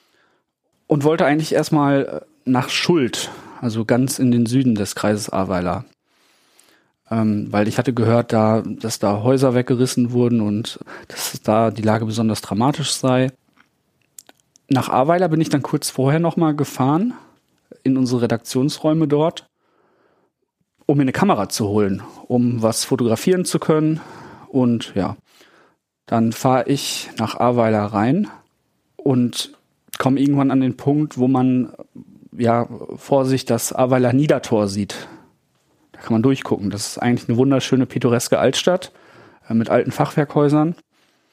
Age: 40-59